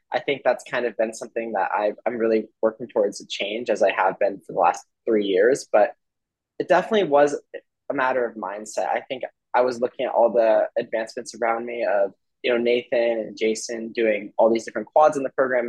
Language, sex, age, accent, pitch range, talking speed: English, male, 20-39, American, 110-125 Hz, 220 wpm